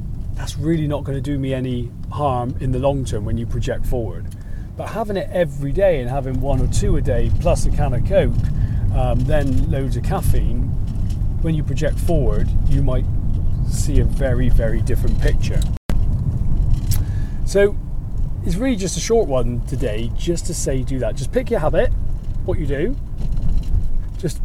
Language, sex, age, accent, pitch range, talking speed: English, male, 40-59, British, 100-140 Hz, 175 wpm